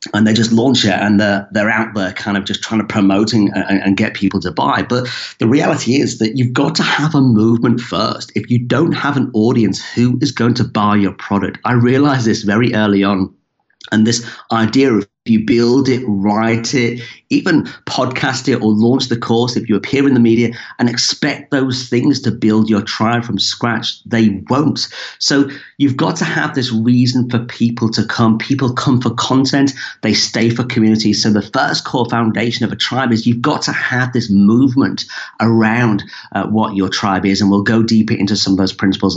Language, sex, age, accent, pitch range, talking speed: English, male, 40-59, British, 105-130 Hz, 210 wpm